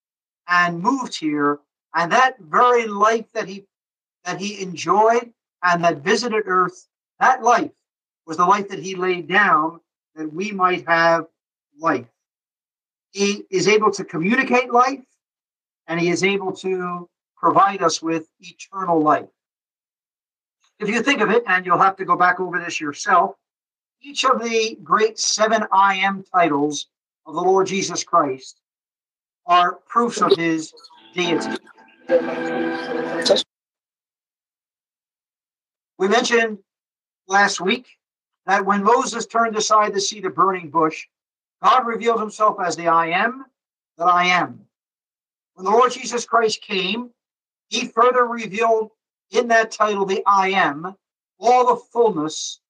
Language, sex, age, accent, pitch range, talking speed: English, male, 50-69, American, 175-230 Hz, 135 wpm